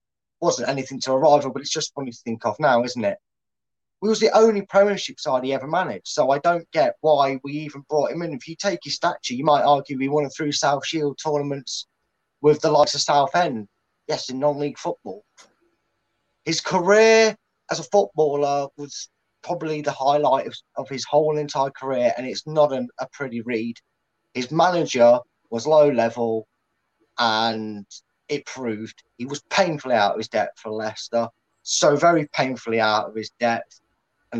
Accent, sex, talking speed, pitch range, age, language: British, male, 185 wpm, 120-155 Hz, 30-49, English